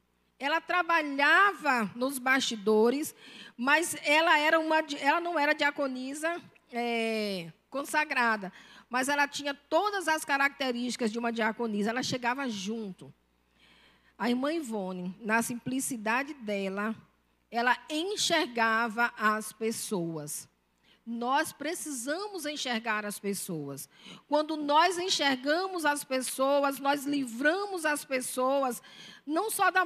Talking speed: 100 wpm